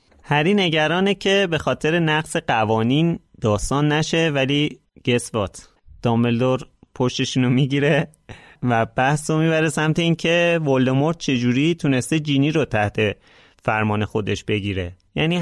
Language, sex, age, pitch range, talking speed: Persian, male, 30-49, 110-150 Hz, 125 wpm